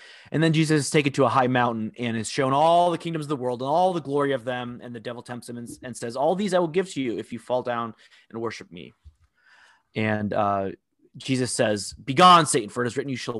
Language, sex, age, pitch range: English, male, 30-49, 115-160 Hz